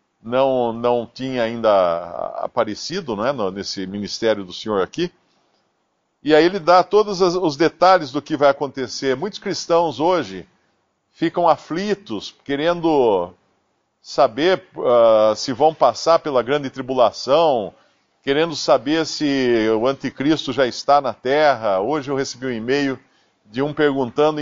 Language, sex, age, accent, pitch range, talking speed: Portuguese, male, 50-69, Brazilian, 125-170 Hz, 130 wpm